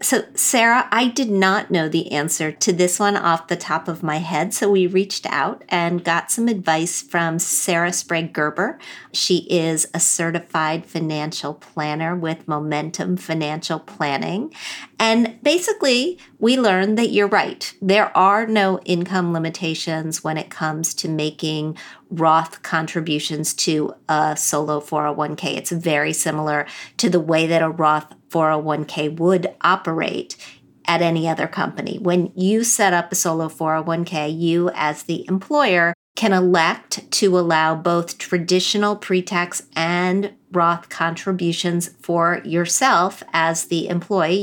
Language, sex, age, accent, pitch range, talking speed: English, female, 50-69, American, 160-190 Hz, 140 wpm